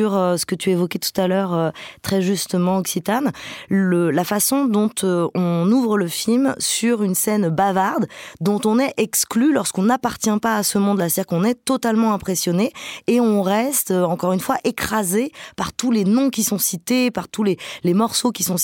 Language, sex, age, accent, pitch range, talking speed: French, female, 20-39, French, 185-230 Hz, 200 wpm